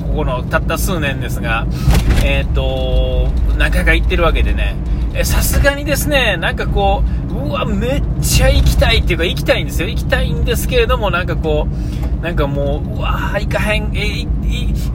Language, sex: Japanese, male